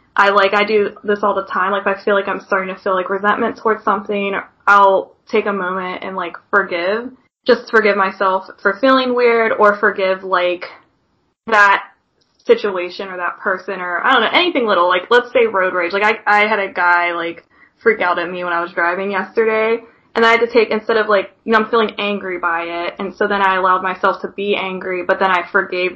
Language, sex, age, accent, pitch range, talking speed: English, female, 20-39, American, 185-210 Hz, 225 wpm